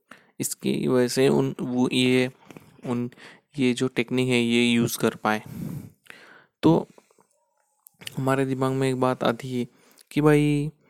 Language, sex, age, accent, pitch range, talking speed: Hindi, male, 20-39, native, 120-145 Hz, 140 wpm